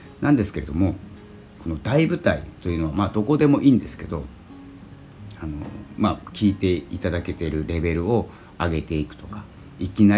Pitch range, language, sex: 85-105 Hz, Japanese, male